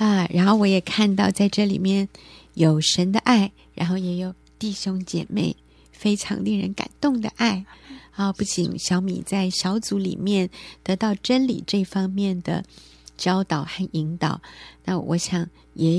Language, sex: Chinese, female